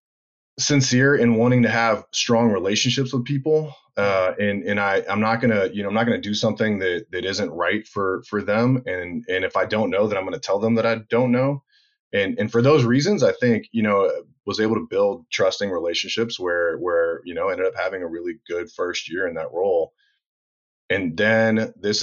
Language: English